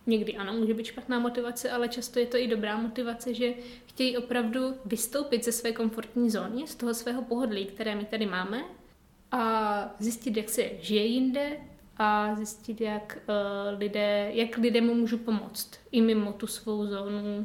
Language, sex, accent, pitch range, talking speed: Czech, female, native, 210-240 Hz, 170 wpm